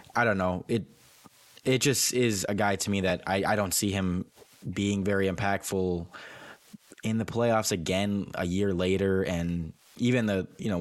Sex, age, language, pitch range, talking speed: male, 20-39, English, 90-100 Hz, 180 wpm